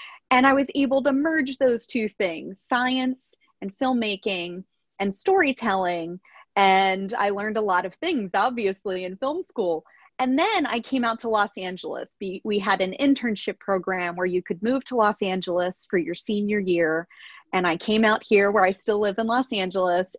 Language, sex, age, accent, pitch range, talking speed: English, female, 30-49, American, 190-255 Hz, 180 wpm